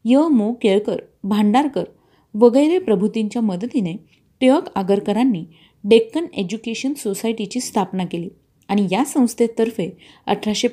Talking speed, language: 100 wpm, Marathi